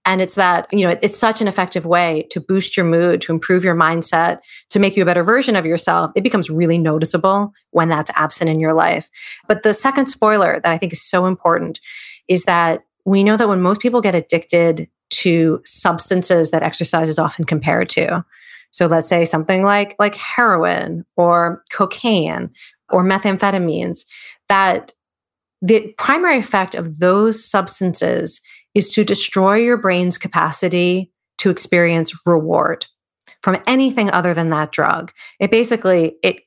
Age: 30-49